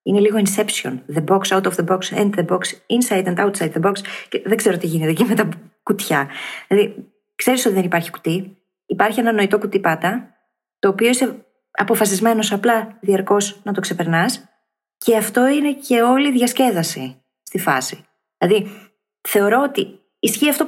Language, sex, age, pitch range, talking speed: Greek, female, 20-39, 165-215 Hz, 175 wpm